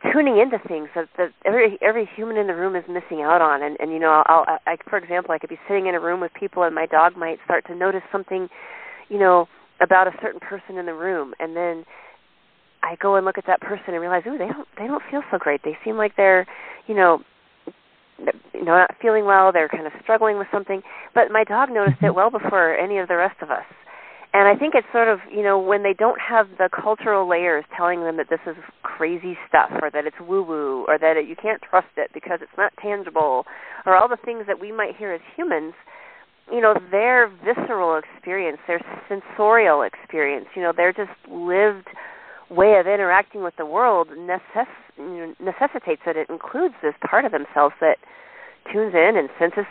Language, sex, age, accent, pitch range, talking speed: English, female, 30-49, American, 170-215 Hz, 215 wpm